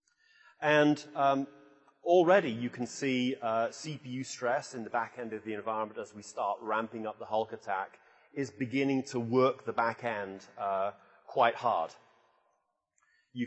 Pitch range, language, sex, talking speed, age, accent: 110-135 Hz, English, male, 155 wpm, 30-49, British